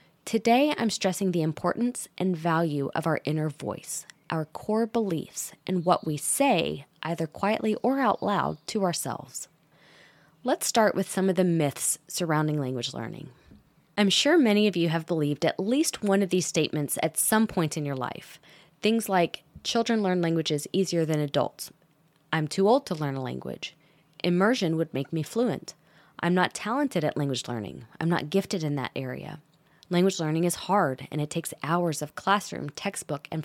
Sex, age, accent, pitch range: female, 20-39, American, 155-200 Hz